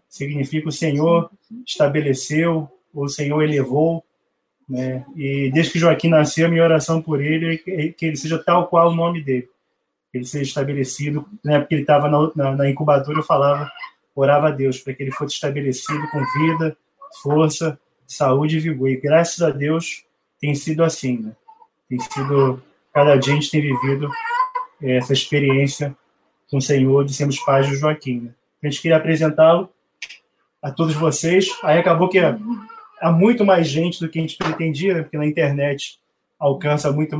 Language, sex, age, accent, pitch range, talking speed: Portuguese, male, 20-39, Brazilian, 140-180 Hz, 175 wpm